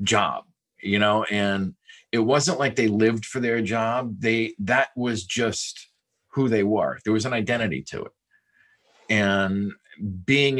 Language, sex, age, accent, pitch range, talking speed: English, male, 40-59, American, 100-120 Hz, 155 wpm